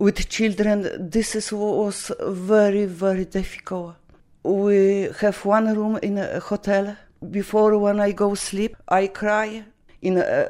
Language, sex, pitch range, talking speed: English, female, 185-210 Hz, 145 wpm